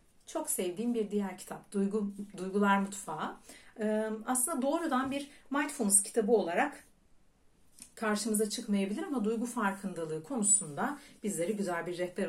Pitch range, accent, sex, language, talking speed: 190-255 Hz, native, female, Turkish, 110 wpm